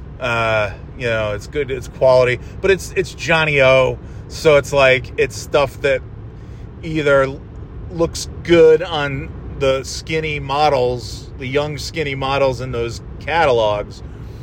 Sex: male